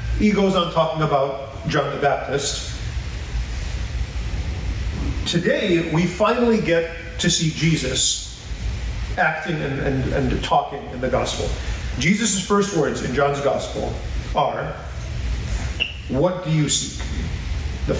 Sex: male